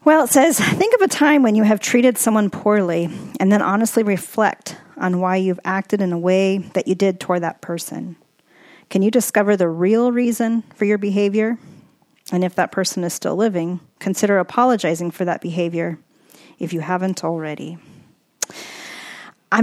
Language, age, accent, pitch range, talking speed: English, 40-59, American, 180-215 Hz, 170 wpm